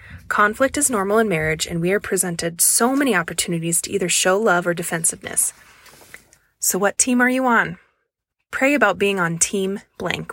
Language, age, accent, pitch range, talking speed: English, 20-39, American, 165-215 Hz, 175 wpm